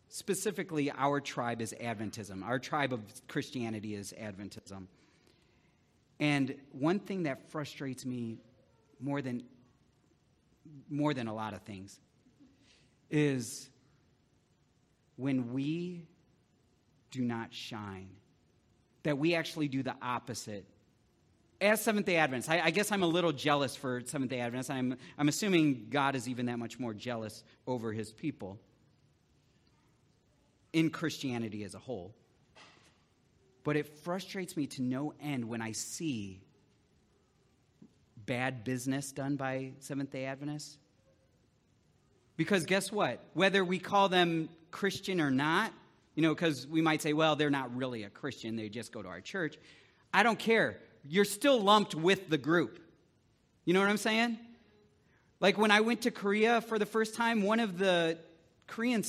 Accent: American